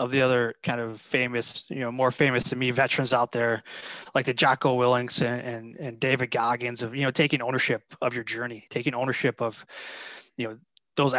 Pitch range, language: 120-140 Hz, English